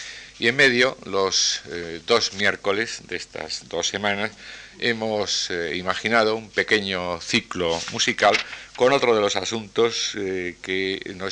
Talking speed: 140 wpm